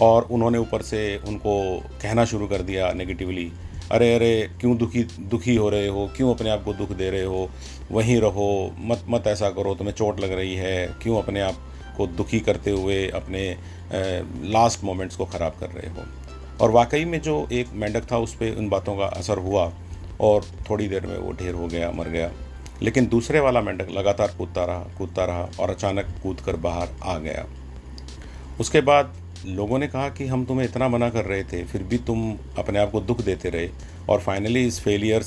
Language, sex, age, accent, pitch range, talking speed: Hindi, male, 40-59, native, 90-110 Hz, 200 wpm